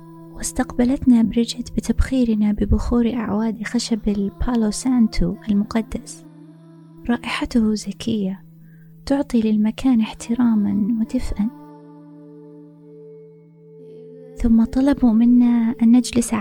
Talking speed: 75 wpm